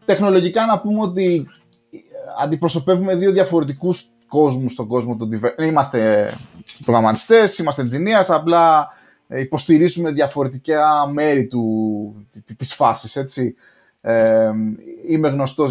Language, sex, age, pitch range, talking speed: Greek, male, 20-39, 115-155 Hz, 95 wpm